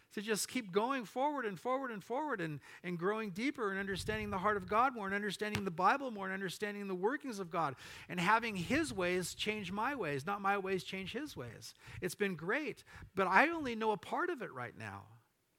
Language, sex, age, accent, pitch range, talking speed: English, male, 50-69, American, 155-225 Hz, 220 wpm